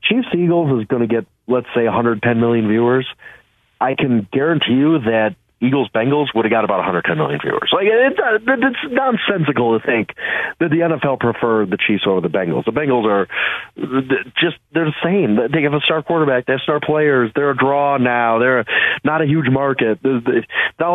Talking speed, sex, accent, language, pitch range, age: 195 wpm, male, American, English, 115-145 Hz, 40-59